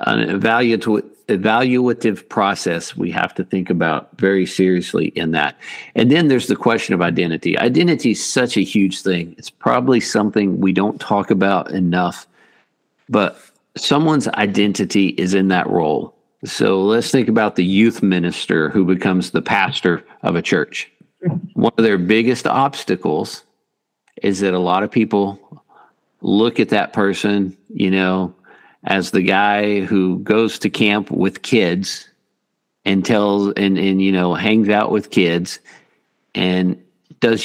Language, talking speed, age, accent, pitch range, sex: English, 150 wpm, 50-69, American, 90-110 Hz, male